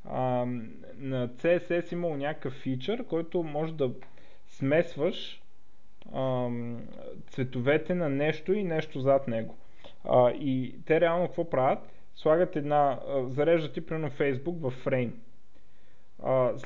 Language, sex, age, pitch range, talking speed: Bulgarian, male, 20-39, 130-170 Hz, 125 wpm